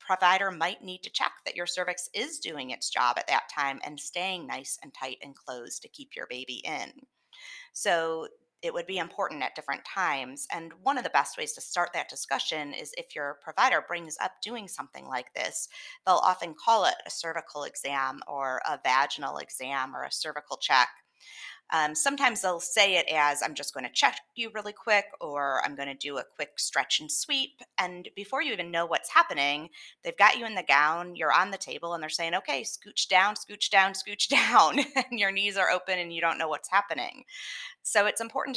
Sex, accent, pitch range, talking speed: female, American, 160-255 Hz, 210 wpm